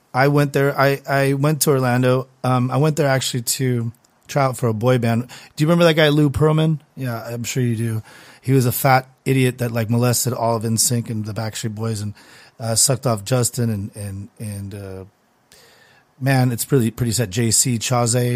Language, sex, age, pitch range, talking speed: English, male, 30-49, 115-135 Hz, 205 wpm